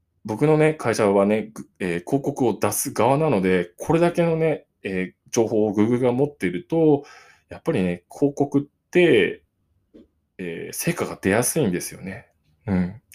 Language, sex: Japanese, male